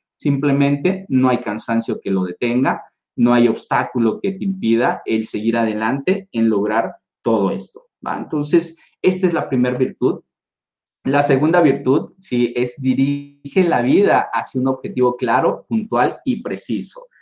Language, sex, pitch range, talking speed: English, male, 120-170 Hz, 150 wpm